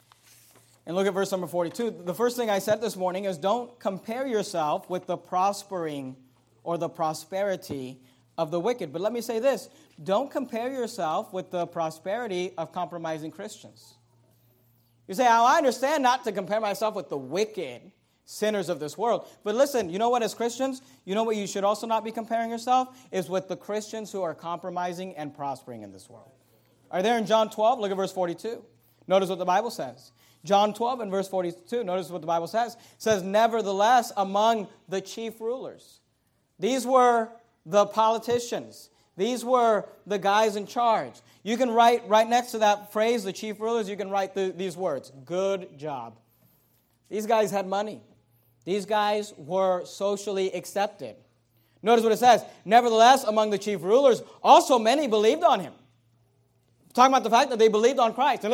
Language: English